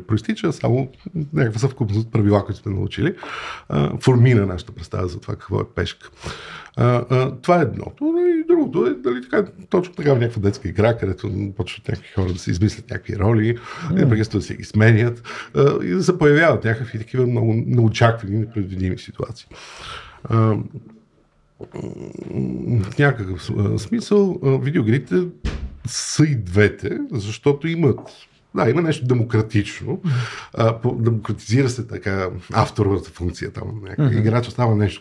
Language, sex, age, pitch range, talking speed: Bulgarian, male, 50-69, 100-130 Hz, 130 wpm